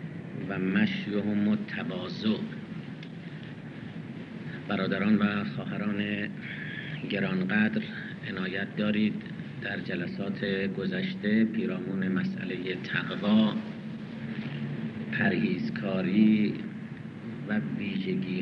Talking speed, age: 60 wpm, 50-69